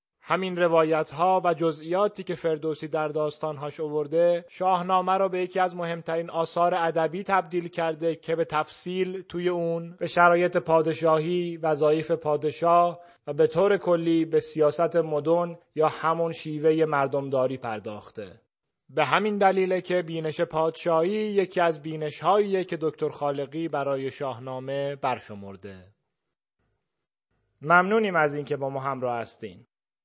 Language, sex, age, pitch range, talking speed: Persian, male, 30-49, 145-175 Hz, 130 wpm